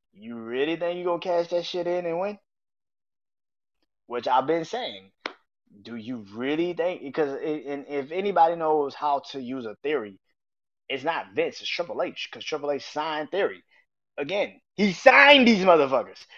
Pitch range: 130-190 Hz